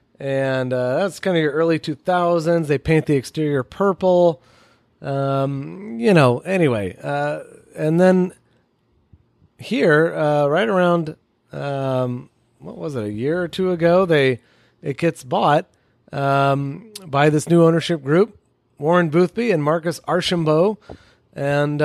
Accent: American